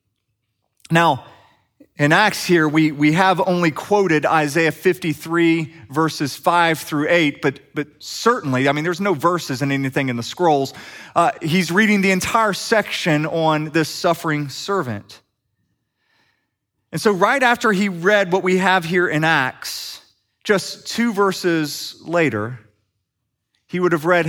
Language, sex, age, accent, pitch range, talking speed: English, male, 30-49, American, 140-200 Hz, 145 wpm